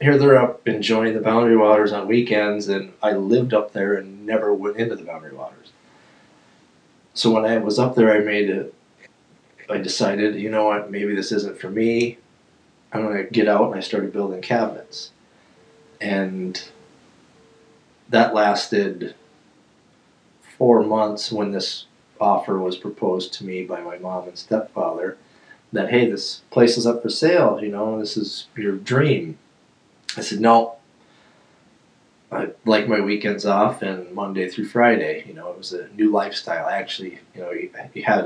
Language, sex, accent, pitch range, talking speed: English, male, American, 95-115 Hz, 165 wpm